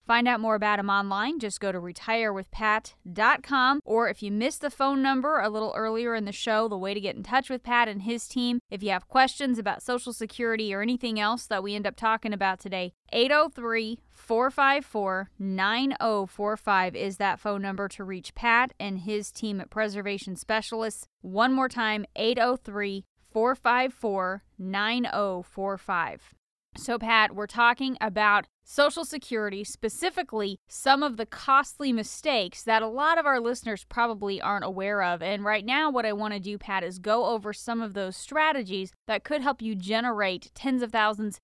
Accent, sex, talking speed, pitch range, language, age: American, female, 170 wpm, 200-240 Hz, English, 20-39